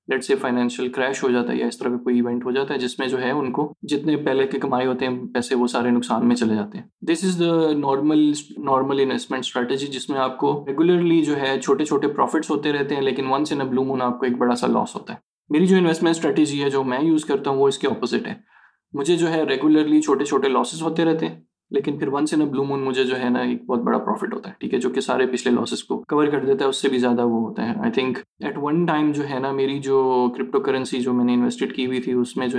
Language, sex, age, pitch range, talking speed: Urdu, male, 20-39, 125-150 Hz, 145 wpm